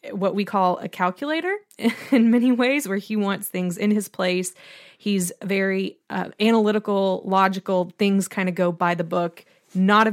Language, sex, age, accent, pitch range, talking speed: English, female, 20-39, American, 180-215 Hz, 170 wpm